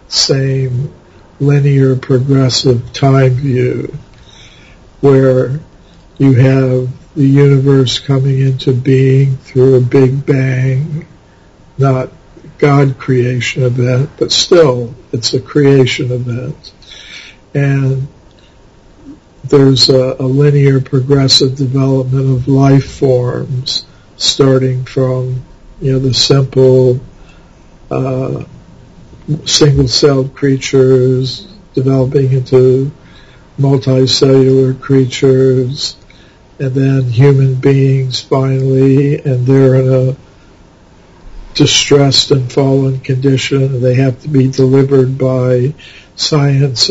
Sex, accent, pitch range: male, American, 130-140 Hz